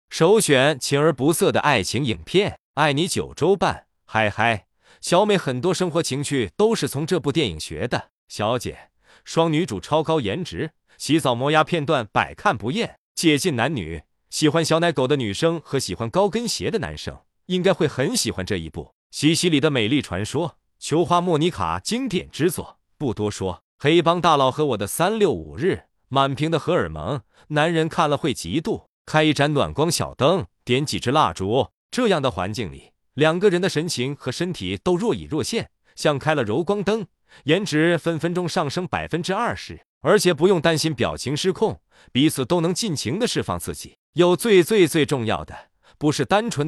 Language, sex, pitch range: Chinese, male, 130-175 Hz